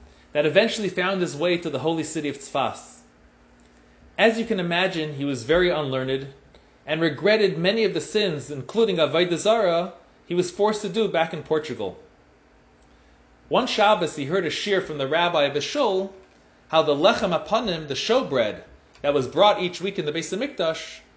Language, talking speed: English, 175 wpm